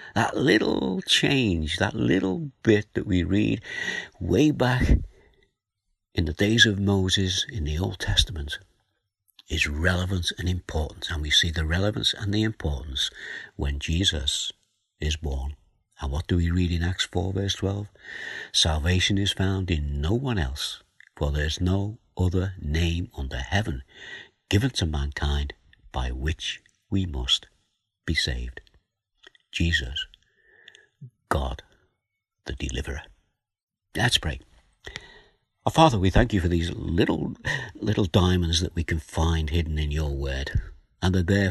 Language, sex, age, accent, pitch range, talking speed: English, male, 60-79, British, 75-100 Hz, 140 wpm